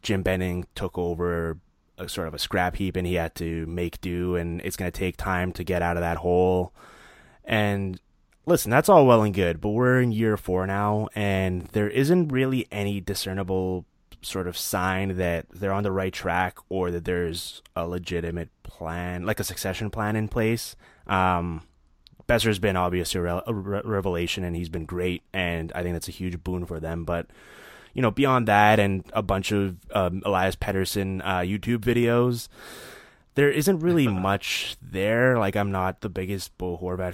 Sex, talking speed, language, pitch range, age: male, 185 wpm, English, 90-105 Hz, 20-39